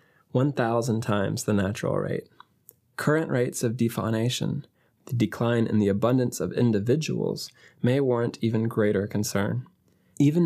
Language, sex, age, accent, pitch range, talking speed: English, male, 20-39, American, 110-140 Hz, 125 wpm